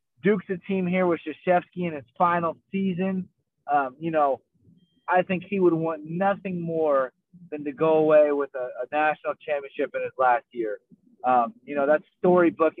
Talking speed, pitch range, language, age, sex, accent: 180 wpm, 145-185 Hz, English, 30-49, male, American